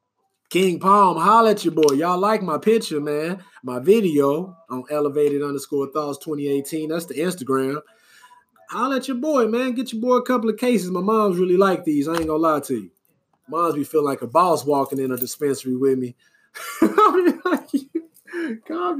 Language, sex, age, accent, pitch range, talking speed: English, male, 30-49, American, 130-175 Hz, 185 wpm